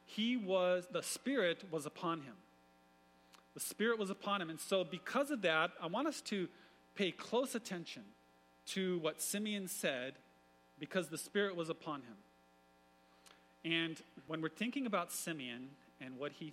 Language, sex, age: English, male, 40-59